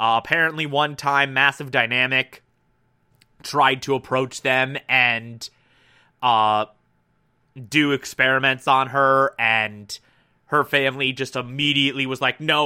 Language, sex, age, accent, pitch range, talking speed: English, male, 20-39, American, 130-150 Hz, 115 wpm